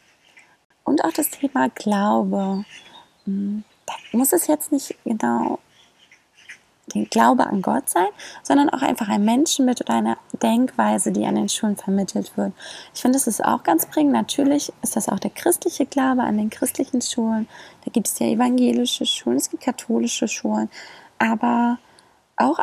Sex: female